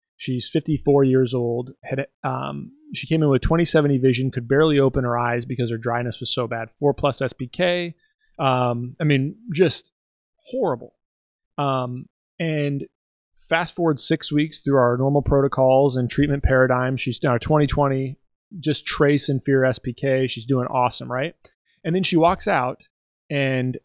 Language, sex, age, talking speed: English, male, 30-49, 160 wpm